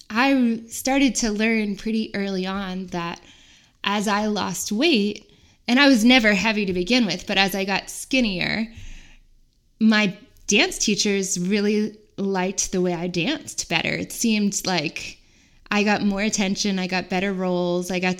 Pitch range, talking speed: 180-215 Hz, 160 wpm